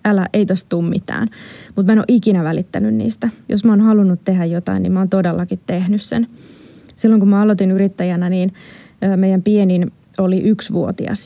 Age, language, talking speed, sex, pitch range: 20-39, Finnish, 170 wpm, female, 180-210 Hz